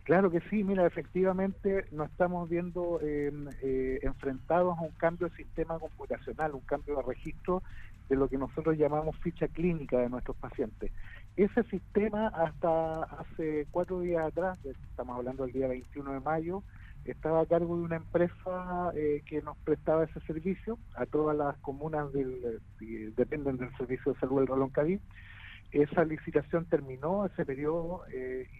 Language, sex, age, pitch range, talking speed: Spanish, male, 50-69, 130-170 Hz, 160 wpm